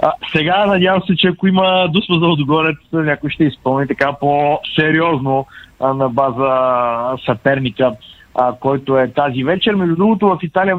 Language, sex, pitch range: Bulgarian, male, 125-155 Hz